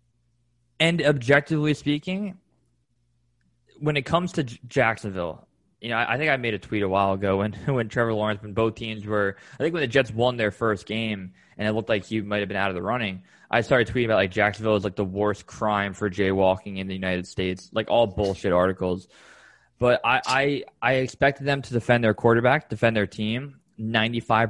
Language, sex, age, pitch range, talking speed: English, male, 20-39, 100-125 Hz, 210 wpm